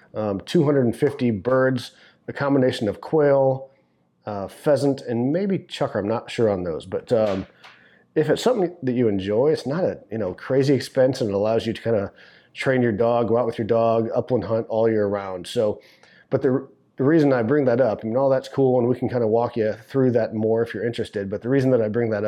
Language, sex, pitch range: English, male, 105-130 Hz